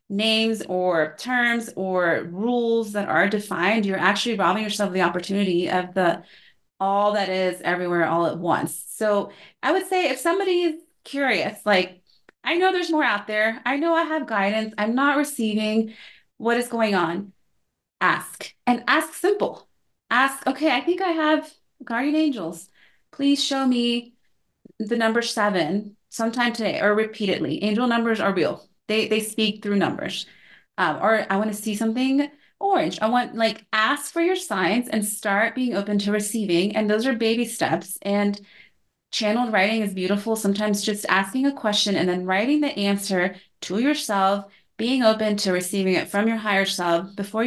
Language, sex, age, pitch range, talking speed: English, female, 30-49, 200-245 Hz, 170 wpm